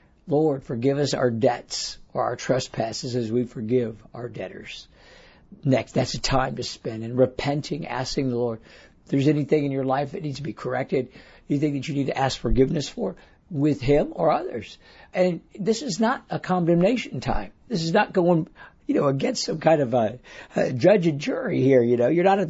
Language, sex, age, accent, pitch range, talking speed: English, male, 60-79, American, 125-165 Hz, 200 wpm